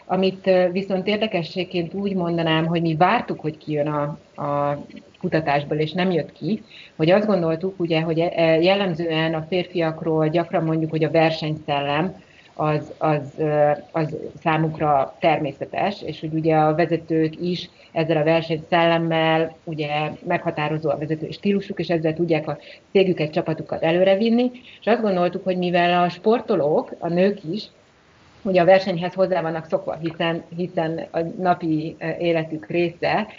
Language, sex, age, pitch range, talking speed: Hungarian, female, 30-49, 160-185 Hz, 140 wpm